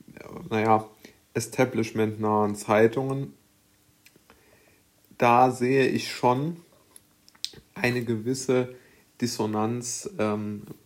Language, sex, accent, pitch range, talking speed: German, male, German, 110-125 Hz, 60 wpm